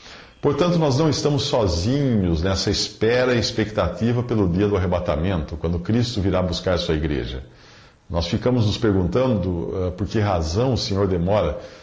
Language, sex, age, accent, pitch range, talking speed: English, male, 50-69, Brazilian, 95-125 Hz, 150 wpm